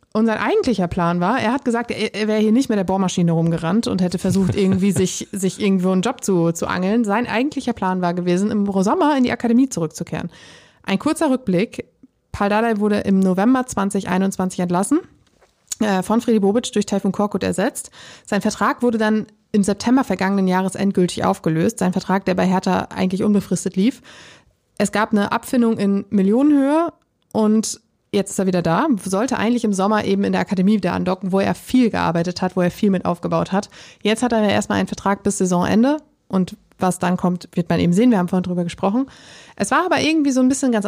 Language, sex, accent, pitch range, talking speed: German, female, German, 185-230 Hz, 205 wpm